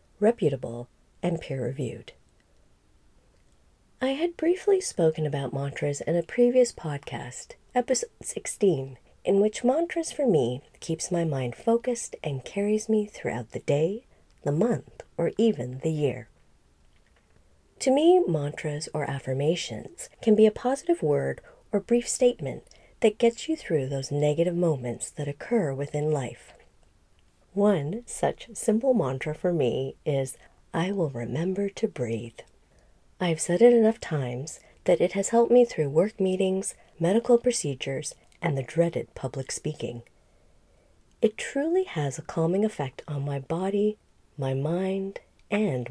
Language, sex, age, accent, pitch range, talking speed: English, female, 40-59, American, 135-220 Hz, 135 wpm